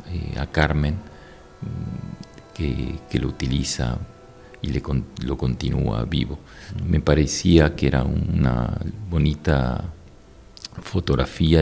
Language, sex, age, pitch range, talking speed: Portuguese, male, 50-69, 70-85 Hz, 95 wpm